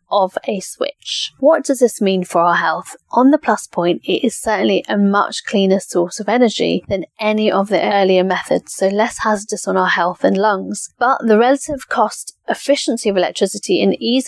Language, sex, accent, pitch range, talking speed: English, female, British, 190-235 Hz, 195 wpm